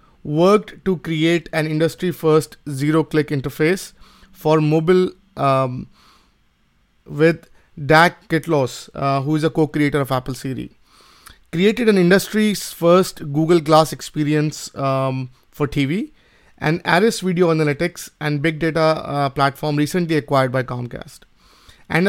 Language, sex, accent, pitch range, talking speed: English, male, Indian, 140-170 Hz, 130 wpm